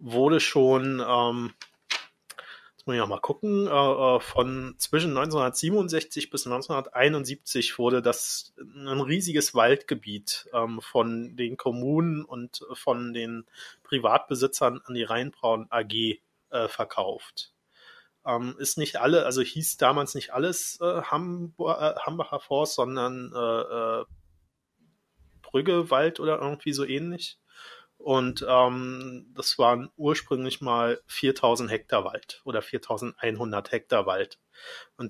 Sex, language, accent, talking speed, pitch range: male, German, German, 115 wpm, 115-150 Hz